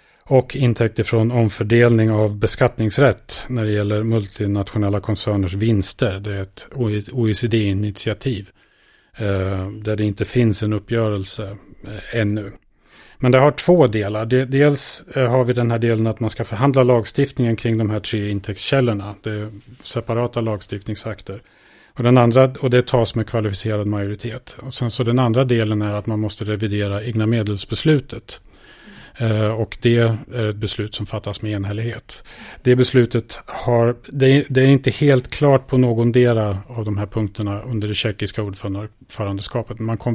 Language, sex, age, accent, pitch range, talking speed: Swedish, male, 30-49, Norwegian, 105-120 Hz, 150 wpm